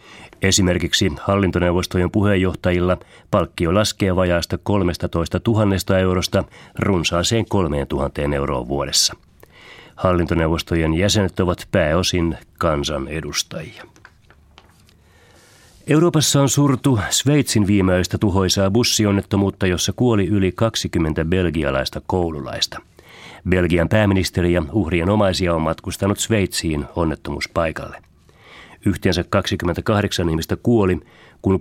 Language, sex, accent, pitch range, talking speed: Finnish, male, native, 85-105 Hz, 85 wpm